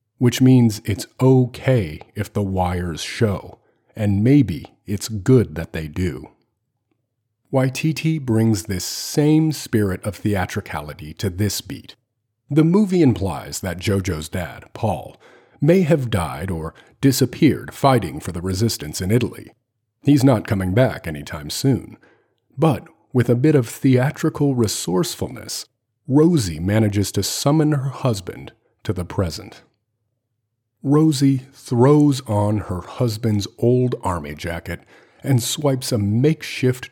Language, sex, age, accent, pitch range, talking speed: English, male, 40-59, American, 95-130 Hz, 125 wpm